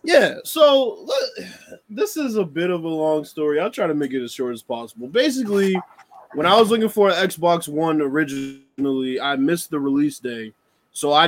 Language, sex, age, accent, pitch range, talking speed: English, male, 20-39, American, 135-180 Hz, 190 wpm